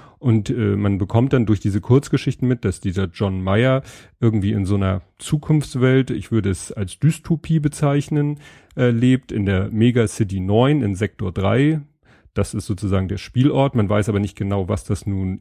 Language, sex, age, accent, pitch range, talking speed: German, male, 30-49, German, 100-130 Hz, 180 wpm